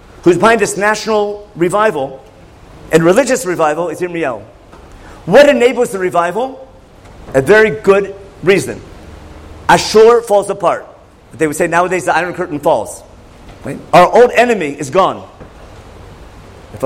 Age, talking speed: 50-69, 125 wpm